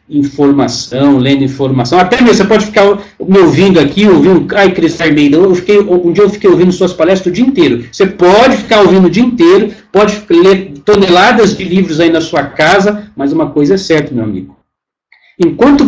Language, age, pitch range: Portuguese, 50-69, 155-205 Hz